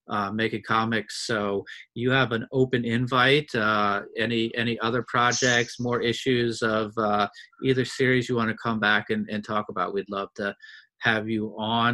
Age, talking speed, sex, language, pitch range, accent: 30-49, 175 wpm, male, English, 105-125 Hz, American